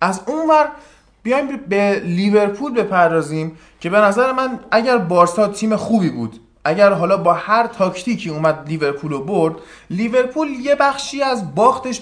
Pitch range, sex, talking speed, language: 190-245 Hz, male, 150 wpm, Persian